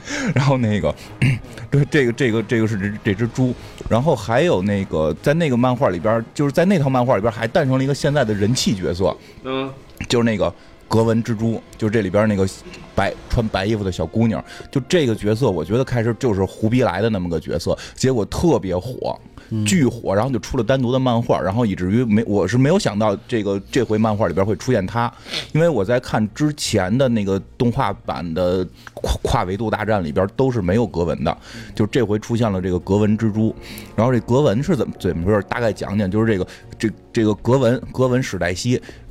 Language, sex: Chinese, male